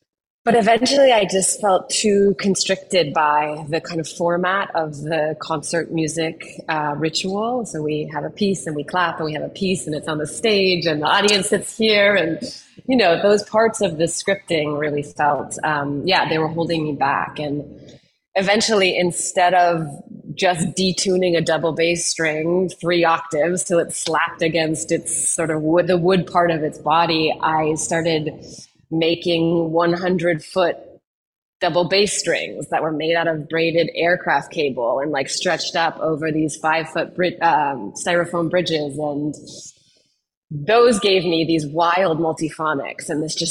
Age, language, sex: 30-49, English, female